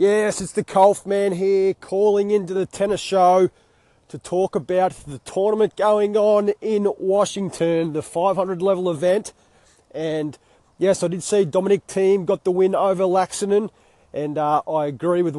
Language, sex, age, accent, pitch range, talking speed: English, male, 30-49, Australian, 165-190 Hz, 150 wpm